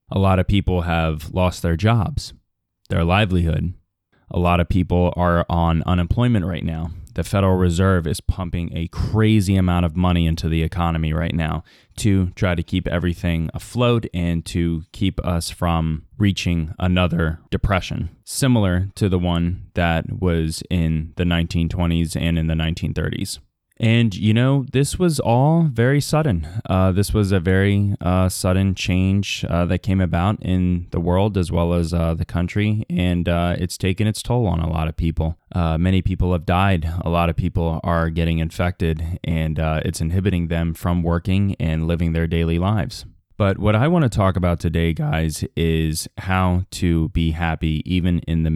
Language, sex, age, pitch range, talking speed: English, male, 20-39, 85-95 Hz, 175 wpm